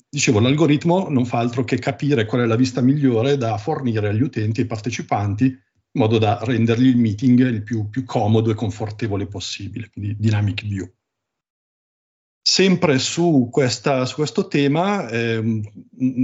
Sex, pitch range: male, 110-130 Hz